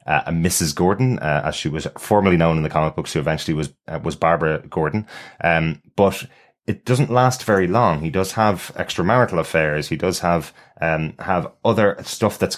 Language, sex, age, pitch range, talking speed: English, male, 30-49, 85-105 Hz, 195 wpm